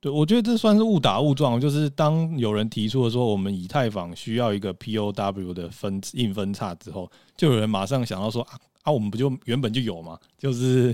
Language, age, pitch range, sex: Chinese, 20-39, 95-125 Hz, male